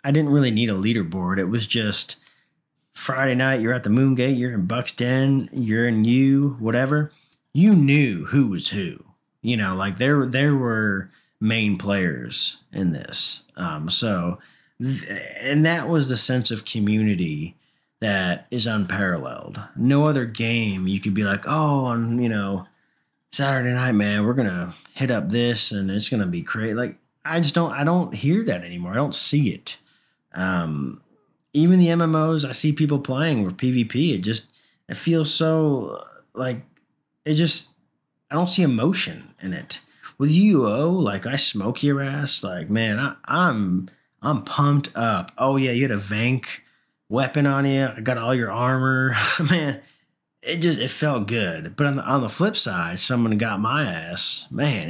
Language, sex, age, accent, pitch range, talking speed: English, male, 30-49, American, 105-145 Hz, 175 wpm